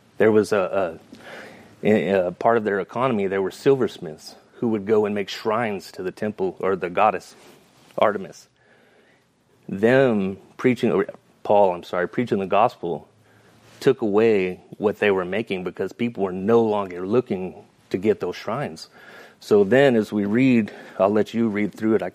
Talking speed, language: 165 wpm, English